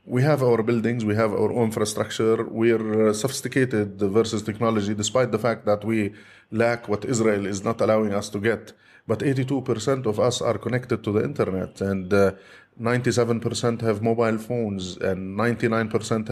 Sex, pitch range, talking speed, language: male, 105-120 Hz, 160 wpm, German